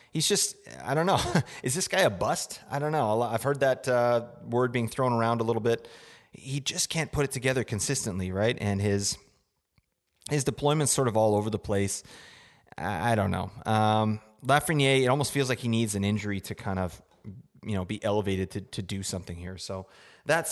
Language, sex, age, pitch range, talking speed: English, male, 30-49, 105-135 Hz, 200 wpm